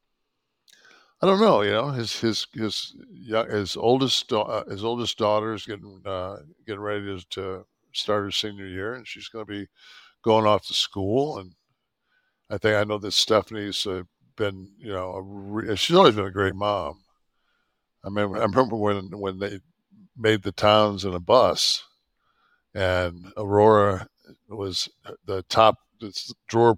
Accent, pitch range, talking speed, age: American, 95-110 Hz, 150 wpm, 60-79